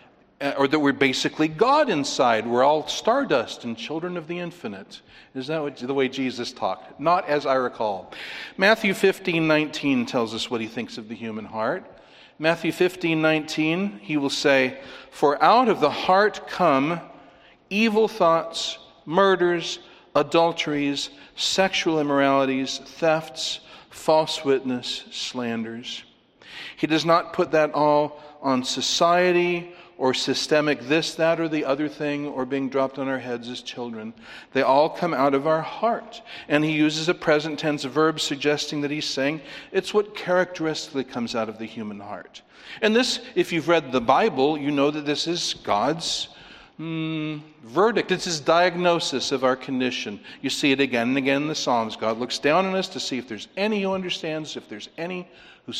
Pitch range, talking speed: 130-170 Hz, 170 wpm